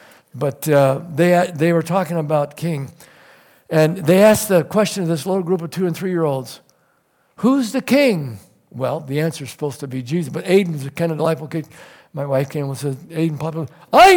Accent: American